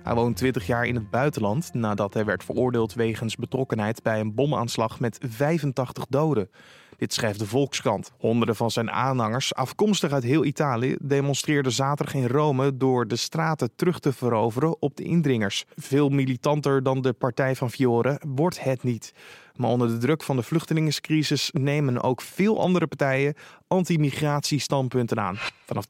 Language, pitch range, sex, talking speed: Dutch, 120-155 Hz, male, 160 wpm